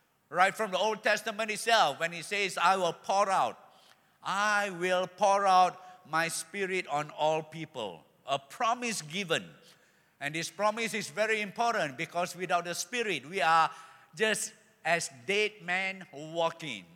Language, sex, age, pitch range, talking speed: English, male, 50-69, 165-210 Hz, 150 wpm